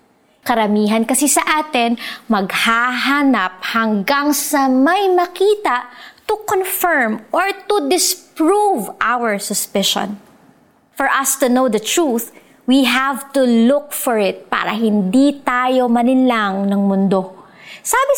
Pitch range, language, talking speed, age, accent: 210-295 Hz, Filipino, 115 wpm, 20-39, native